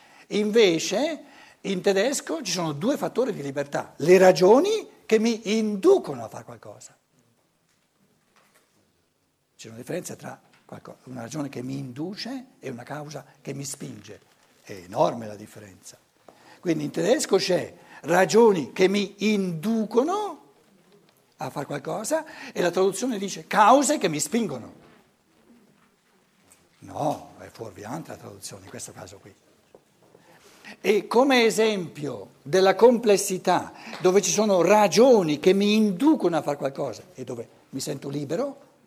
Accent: native